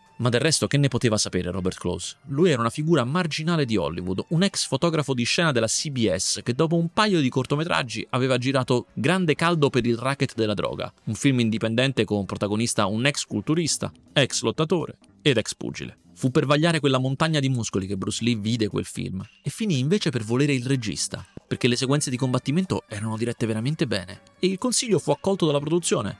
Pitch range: 105-145 Hz